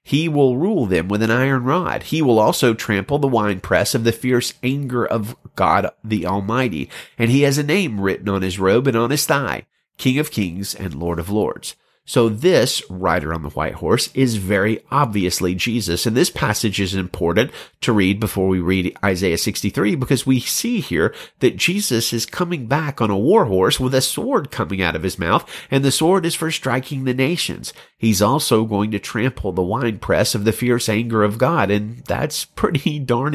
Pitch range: 100-135 Hz